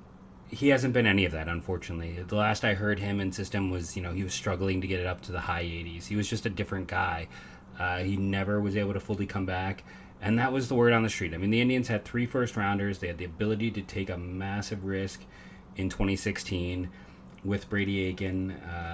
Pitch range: 85-100 Hz